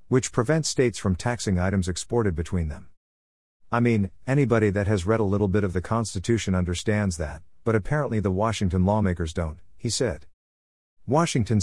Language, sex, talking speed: English, male, 165 wpm